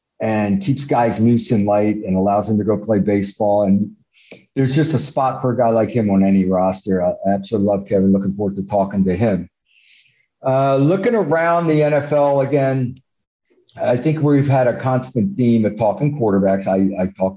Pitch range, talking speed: 100-130 Hz, 190 wpm